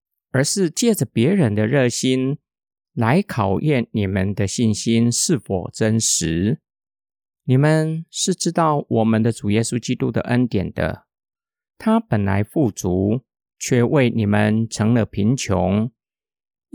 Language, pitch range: Chinese, 110-155 Hz